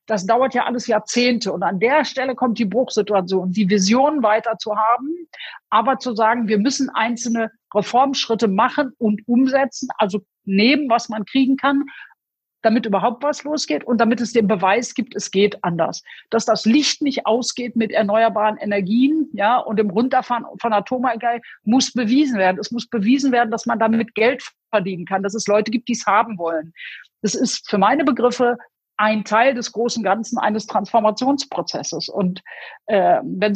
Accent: German